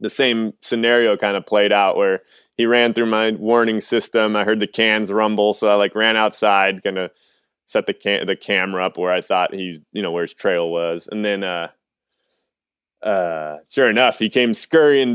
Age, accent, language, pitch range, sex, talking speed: 20-39, American, English, 105-140 Hz, male, 200 wpm